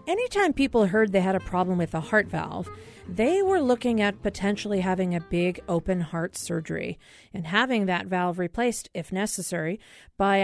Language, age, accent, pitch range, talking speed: English, 40-59, American, 180-280 Hz, 175 wpm